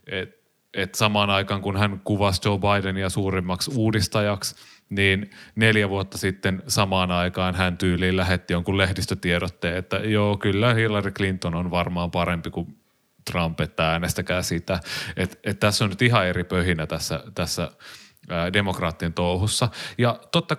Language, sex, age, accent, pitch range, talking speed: Finnish, male, 30-49, native, 90-110 Hz, 145 wpm